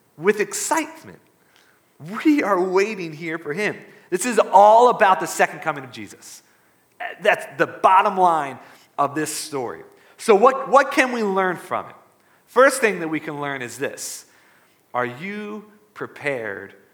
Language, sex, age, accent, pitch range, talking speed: English, male, 40-59, American, 160-255 Hz, 150 wpm